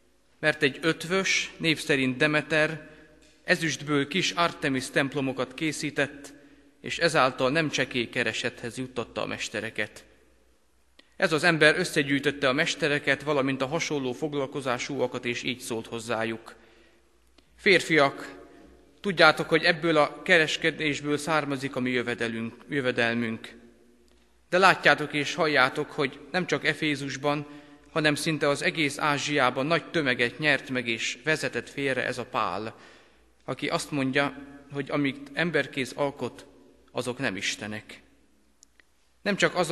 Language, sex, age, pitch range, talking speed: Hungarian, male, 30-49, 125-155 Hz, 115 wpm